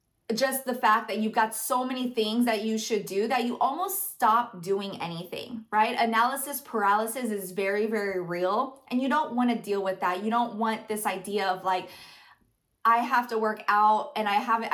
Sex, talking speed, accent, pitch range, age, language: female, 200 wpm, American, 215-260 Hz, 20-39, English